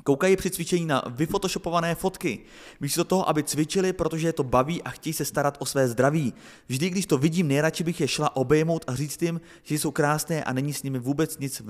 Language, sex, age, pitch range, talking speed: Czech, male, 30-49, 125-160 Hz, 215 wpm